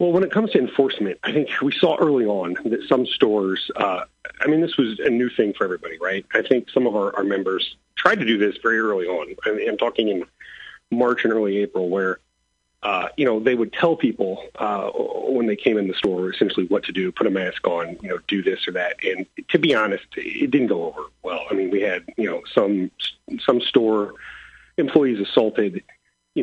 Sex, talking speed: male, 225 wpm